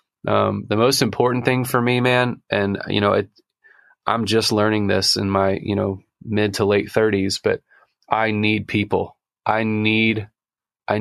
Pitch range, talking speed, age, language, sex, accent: 100-115 Hz, 170 wpm, 30-49, English, male, American